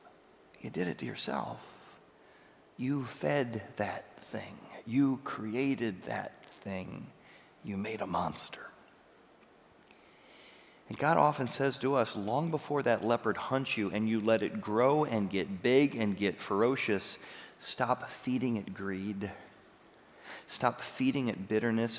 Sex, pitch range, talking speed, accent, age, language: male, 105-135 Hz, 130 wpm, American, 40-59, English